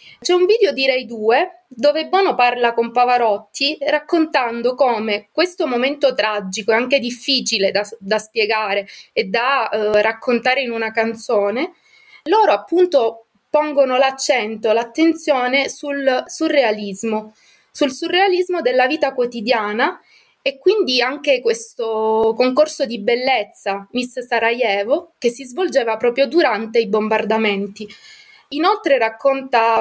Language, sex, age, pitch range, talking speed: Italian, female, 20-39, 225-290 Hz, 120 wpm